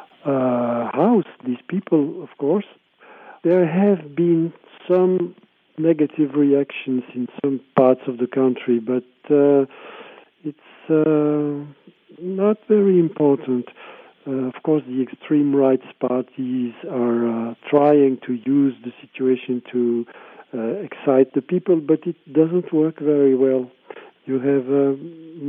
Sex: male